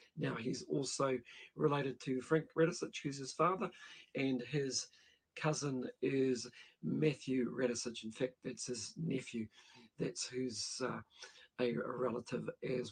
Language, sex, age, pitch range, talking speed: English, male, 50-69, 125-155 Hz, 130 wpm